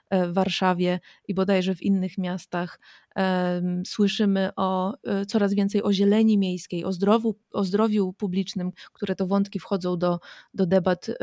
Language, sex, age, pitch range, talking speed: Polish, female, 20-39, 185-210 Hz, 140 wpm